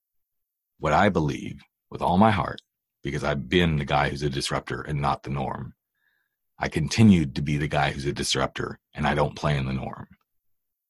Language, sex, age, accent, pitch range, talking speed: English, male, 40-59, American, 75-95 Hz, 195 wpm